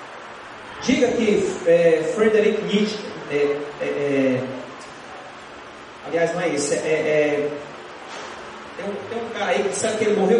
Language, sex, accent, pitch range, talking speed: Portuguese, male, Brazilian, 170-260 Hz, 150 wpm